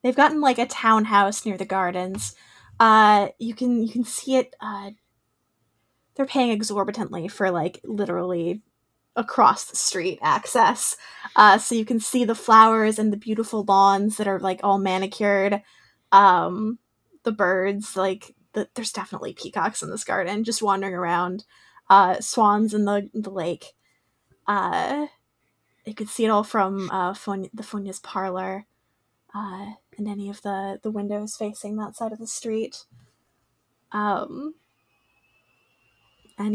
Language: English